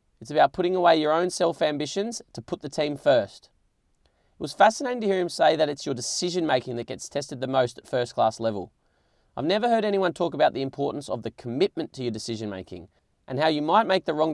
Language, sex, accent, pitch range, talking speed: English, male, Australian, 125-170 Hz, 235 wpm